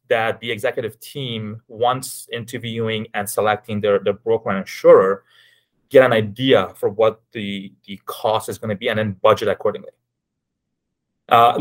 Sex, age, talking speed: male, 20-39, 155 wpm